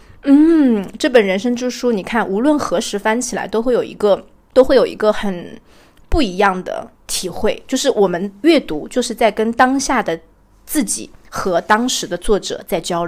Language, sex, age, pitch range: Chinese, female, 20-39, 205-265 Hz